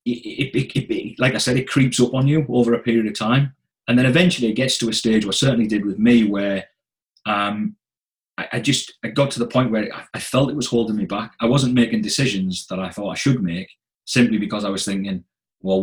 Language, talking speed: English, 245 wpm